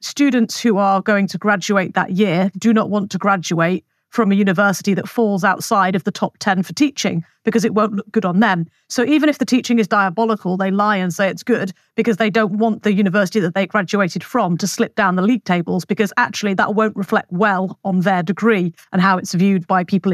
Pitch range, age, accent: 185-225 Hz, 40-59, British